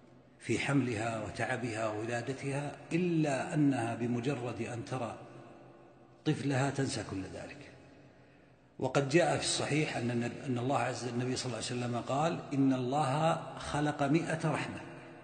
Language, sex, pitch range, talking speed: Arabic, male, 120-170 Hz, 125 wpm